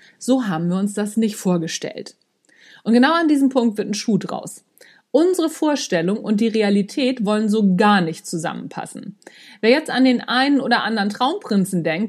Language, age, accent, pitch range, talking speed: German, 50-69, German, 190-255 Hz, 175 wpm